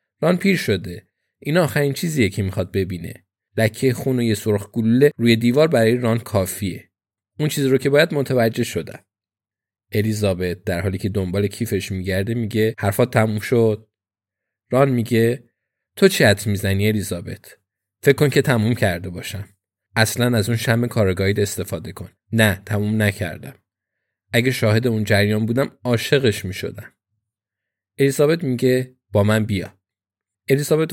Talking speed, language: 140 wpm, Persian